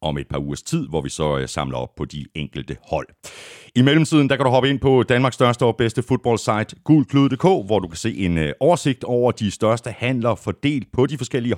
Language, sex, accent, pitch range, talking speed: Danish, male, native, 80-125 Hz, 220 wpm